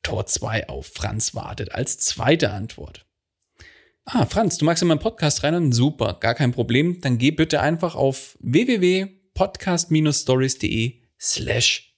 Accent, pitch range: German, 110-145 Hz